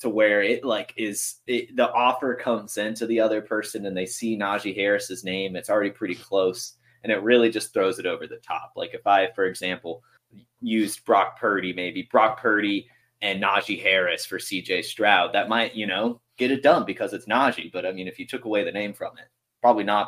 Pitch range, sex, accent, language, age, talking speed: 105-145 Hz, male, American, English, 20-39, 215 wpm